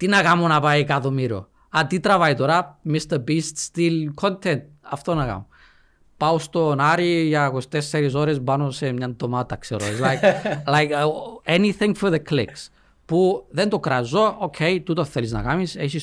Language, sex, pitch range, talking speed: Greek, male, 105-160 Hz, 160 wpm